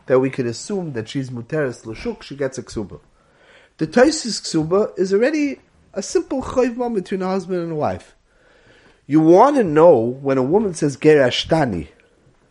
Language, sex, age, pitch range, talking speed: English, male, 30-49, 140-215 Hz, 170 wpm